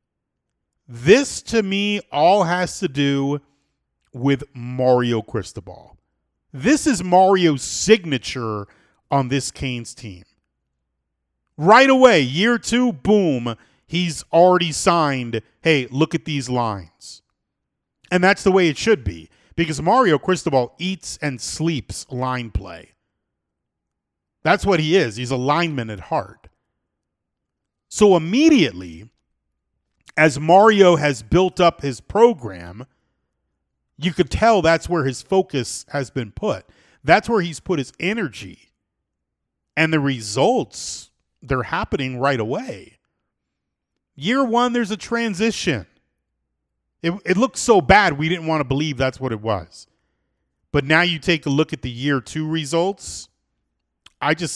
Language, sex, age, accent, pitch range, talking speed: English, male, 40-59, American, 110-180 Hz, 130 wpm